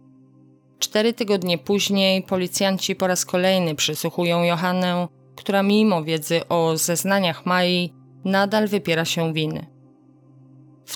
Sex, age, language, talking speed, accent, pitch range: female, 30-49, Polish, 110 wpm, native, 160-190 Hz